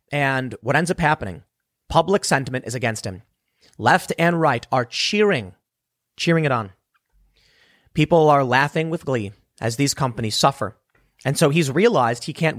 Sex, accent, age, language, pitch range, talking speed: male, American, 30-49, English, 130-175 Hz, 155 wpm